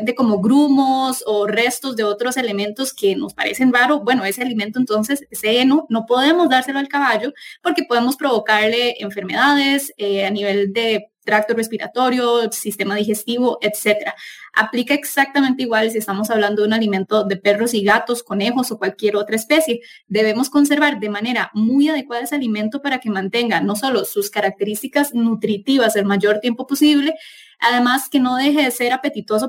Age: 10-29